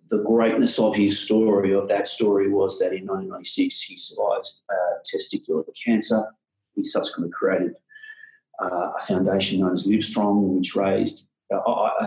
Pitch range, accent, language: 100-130 Hz, Australian, English